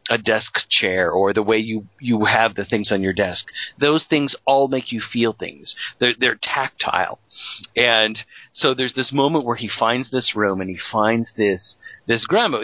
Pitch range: 95-120 Hz